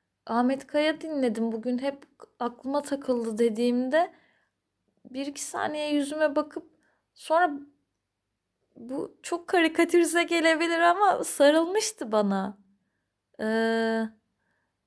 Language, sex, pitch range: Turkish, female, 225-320 Hz